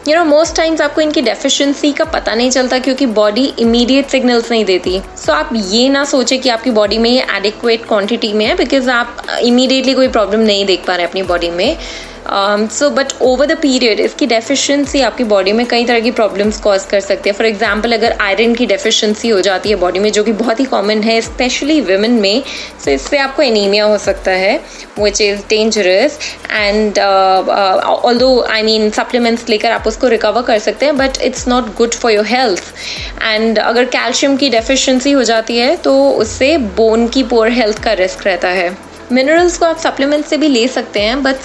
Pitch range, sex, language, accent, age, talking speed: 220-270 Hz, female, Hindi, native, 20-39, 200 wpm